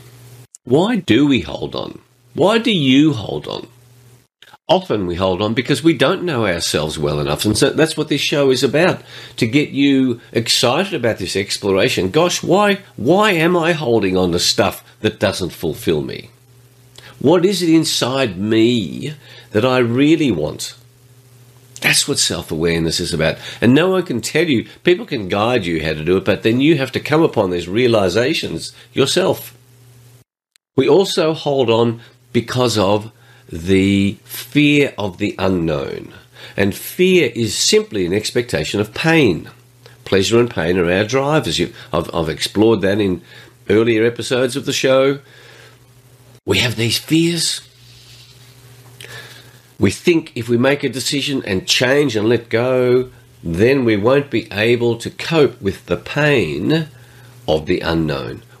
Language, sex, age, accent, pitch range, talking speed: English, male, 50-69, Australian, 110-140 Hz, 155 wpm